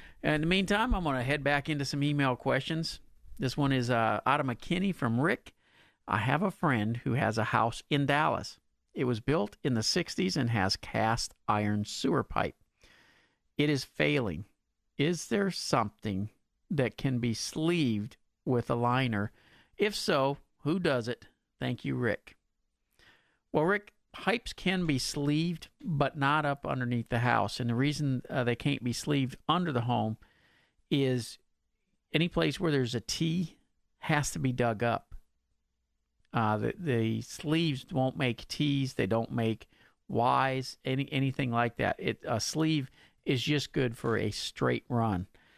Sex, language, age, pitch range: male, English, 50-69, 115-150 Hz